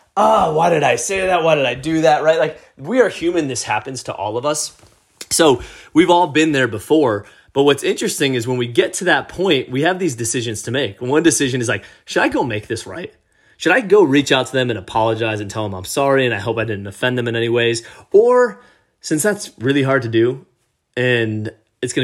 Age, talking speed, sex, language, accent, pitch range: 30-49, 240 wpm, male, English, American, 120-160 Hz